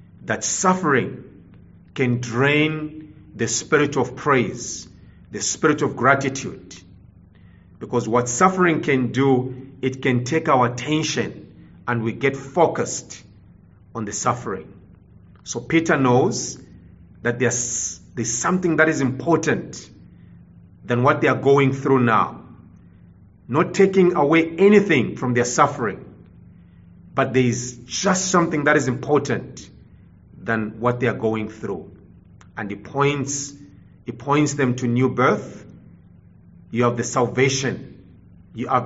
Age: 40-59